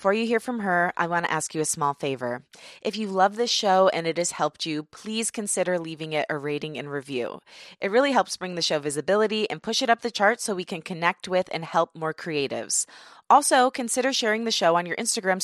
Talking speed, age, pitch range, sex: 240 wpm, 20-39, 160-210 Hz, female